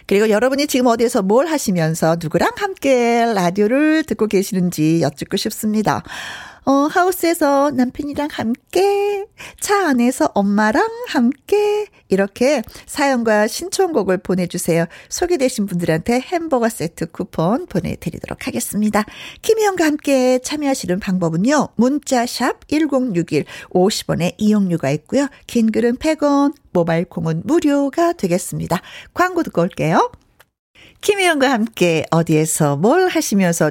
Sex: female